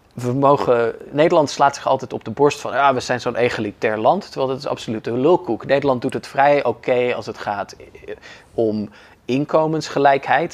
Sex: male